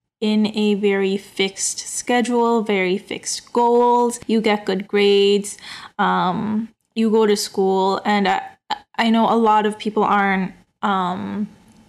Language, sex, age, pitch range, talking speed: English, female, 10-29, 210-245 Hz, 135 wpm